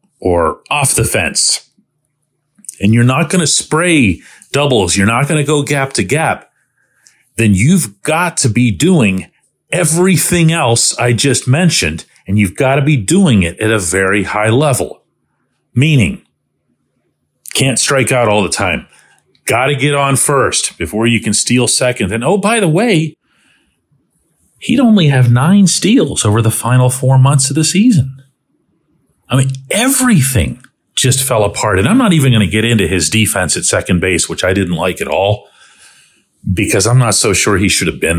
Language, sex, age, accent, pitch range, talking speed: English, male, 40-59, American, 110-155 Hz, 170 wpm